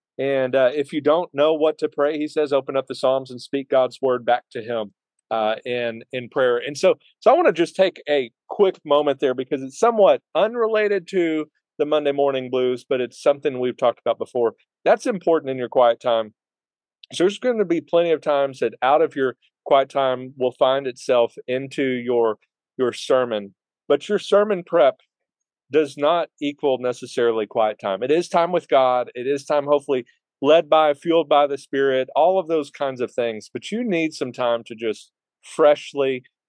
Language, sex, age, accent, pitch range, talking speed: English, male, 40-59, American, 125-155 Hz, 195 wpm